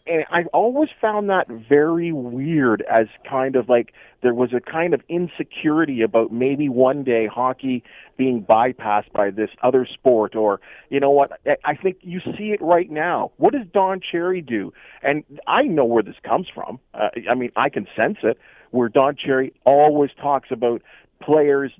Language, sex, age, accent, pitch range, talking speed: English, male, 40-59, American, 125-170 Hz, 180 wpm